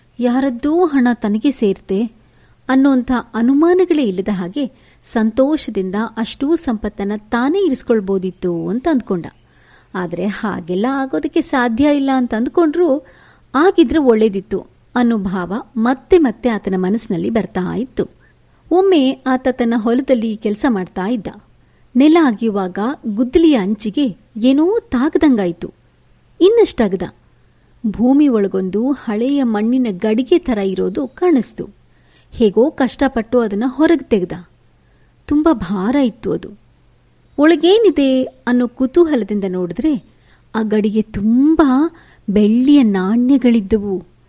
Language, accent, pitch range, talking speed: Kannada, native, 210-275 Hz, 95 wpm